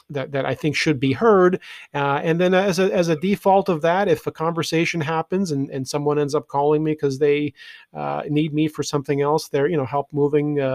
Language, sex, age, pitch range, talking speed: English, male, 40-59, 140-160 Hz, 230 wpm